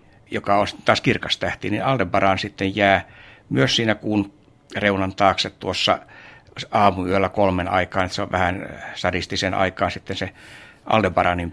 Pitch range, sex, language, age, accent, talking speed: 95-115 Hz, male, Finnish, 60-79, native, 135 wpm